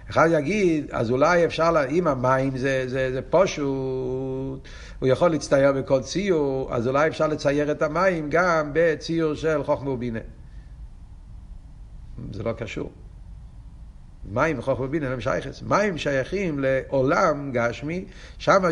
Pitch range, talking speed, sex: 135-200 Hz, 130 wpm, male